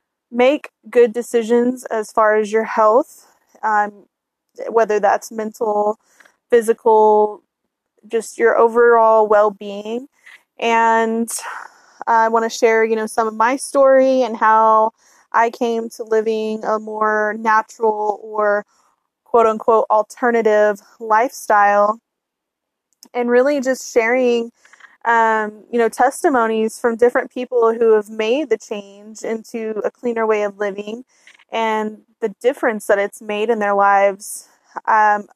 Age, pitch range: 20-39, 215-240 Hz